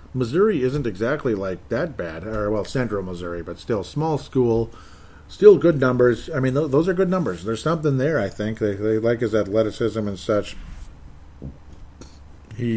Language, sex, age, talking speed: English, male, 50-69, 175 wpm